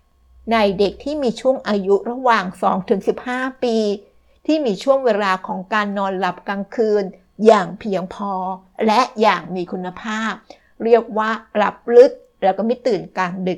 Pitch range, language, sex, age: 195-235 Hz, Thai, female, 60-79